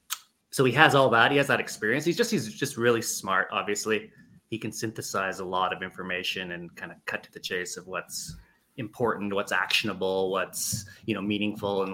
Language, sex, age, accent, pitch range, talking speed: English, male, 20-39, American, 105-130 Hz, 200 wpm